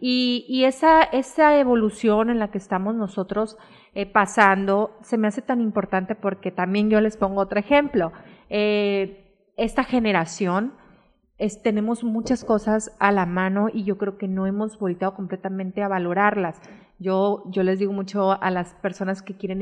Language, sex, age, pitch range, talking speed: Spanish, female, 30-49, 190-225 Hz, 160 wpm